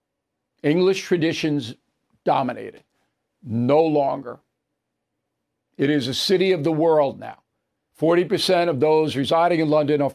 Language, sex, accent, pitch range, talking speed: English, male, American, 145-175 Hz, 120 wpm